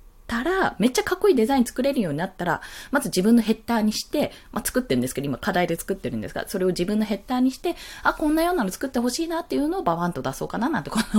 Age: 20-39